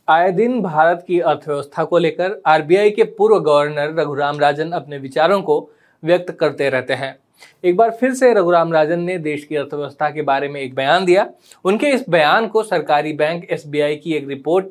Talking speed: 190 wpm